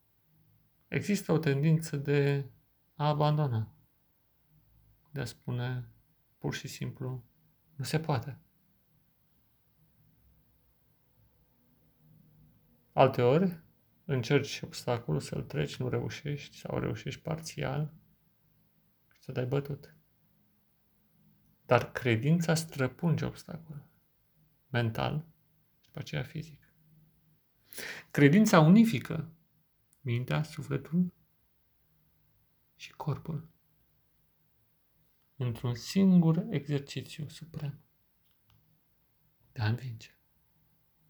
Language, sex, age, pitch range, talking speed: Romanian, male, 30-49, 130-155 Hz, 75 wpm